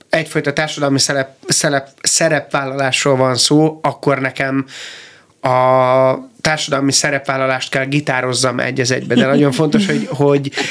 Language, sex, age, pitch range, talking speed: Hungarian, male, 30-49, 135-150 Hz, 105 wpm